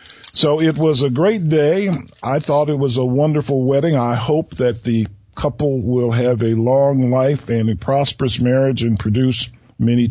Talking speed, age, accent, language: 180 wpm, 50-69, American, English